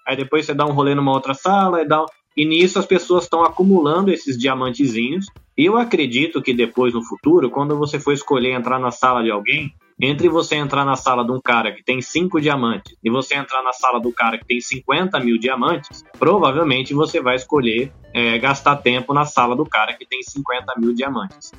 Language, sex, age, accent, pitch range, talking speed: Portuguese, male, 20-39, Brazilian, 125-170 Hz, 210 wpm